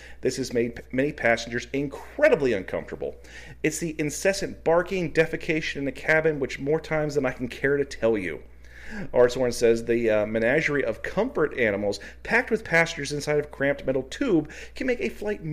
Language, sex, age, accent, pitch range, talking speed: English, male, 40-59, American, 115-160 Hz, 175 wpm